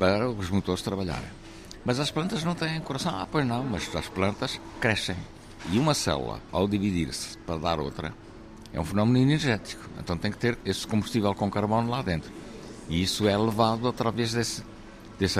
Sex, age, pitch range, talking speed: male, 60-79, 85-115 Hz, 180 wpm